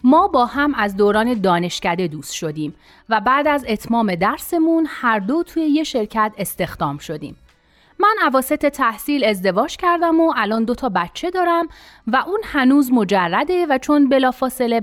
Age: 30-49